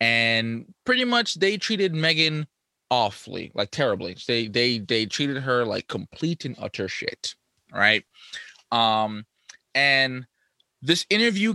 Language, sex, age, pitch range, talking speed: English, male, 20-39, 120-175 Hz, 125 wpm